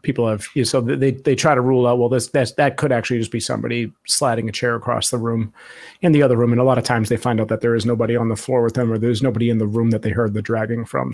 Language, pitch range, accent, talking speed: English, 110-130 Hz, American, 320 wpm